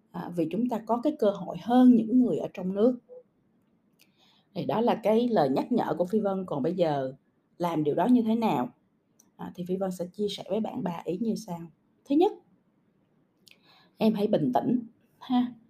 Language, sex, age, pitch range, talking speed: Vietnamese, female, 20-39, 195-245 Hz, 205 wpm